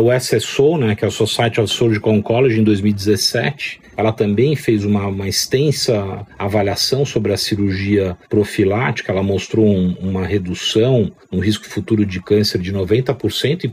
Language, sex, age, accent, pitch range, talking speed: Portuguese, male, 50-69, Brazilian, 100-125 Hz, 155 wpm